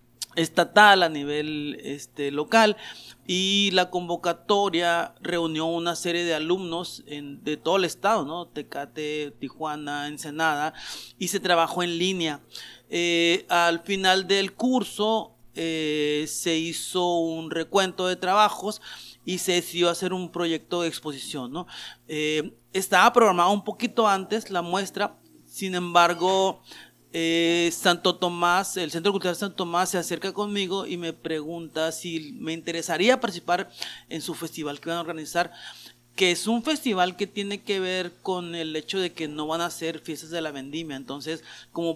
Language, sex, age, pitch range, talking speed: Spanish, male, 40-59, 155-185 Hz, 150 wpm